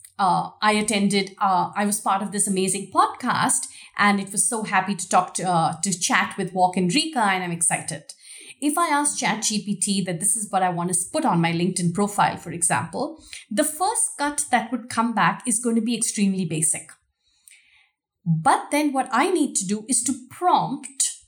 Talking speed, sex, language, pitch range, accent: 200 wpm, female, English, 195-255 Hz, Indian